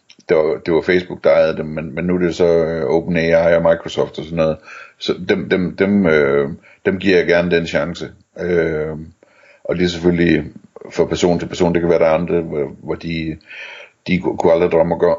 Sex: male